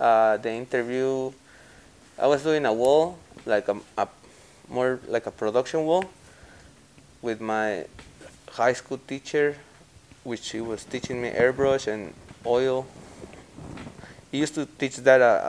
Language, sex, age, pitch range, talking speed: English, male, 20-39, 110-130 Hz, 135 wpm